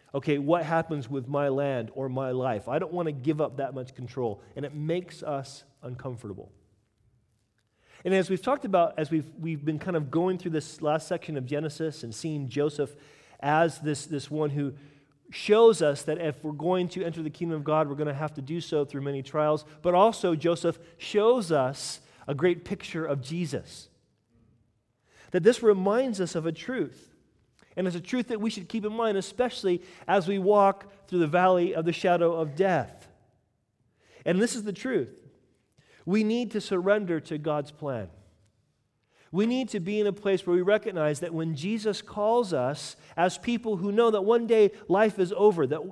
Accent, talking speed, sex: American, 195 wpm, male